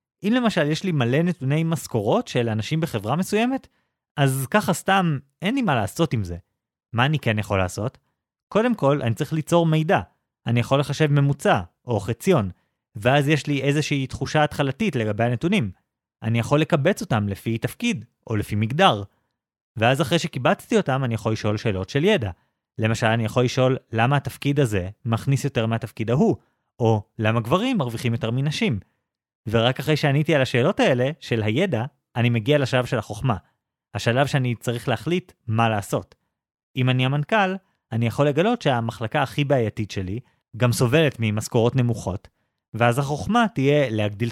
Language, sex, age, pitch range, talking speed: Hebrew, male, 30-49, 115-150 Hz, 160 wpm